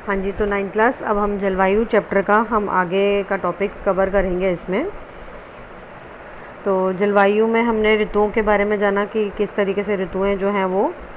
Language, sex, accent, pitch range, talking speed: Hindi, female, native, 190-230 Hz, 185 wpm